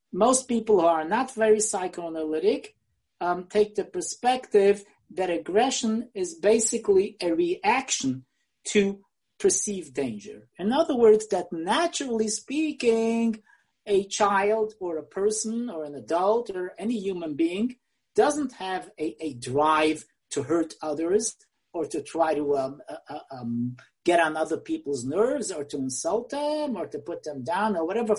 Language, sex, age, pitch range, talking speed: English, male, 40-59, 170-255 Hz, 145 wpm